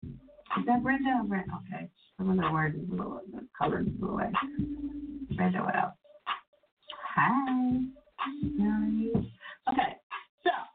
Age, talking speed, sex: 40-59, 110 wpm, female